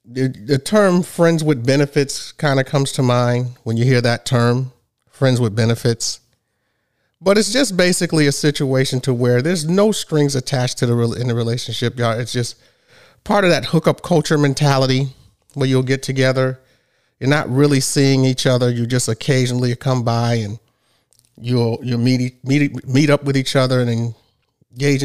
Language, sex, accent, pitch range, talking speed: English, male, American, 120-145 Hz, 170 wpm